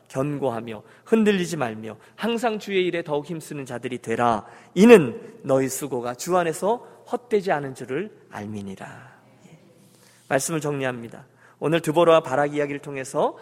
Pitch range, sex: 130-205 Hz, male